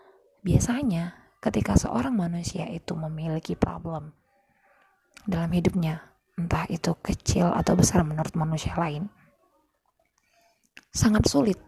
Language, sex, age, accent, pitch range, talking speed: Indonesian, female, 20-39, native, 170-225 Hz, 100 wpm